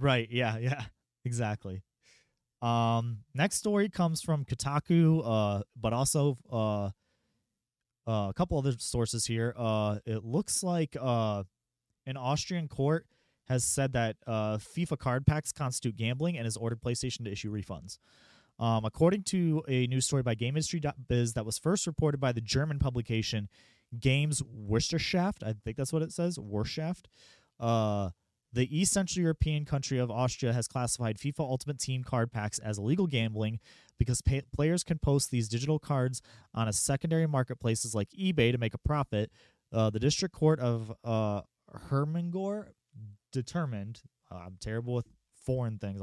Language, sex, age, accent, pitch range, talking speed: English, male, 30-49, American, 110-145 Hz, 160 wpm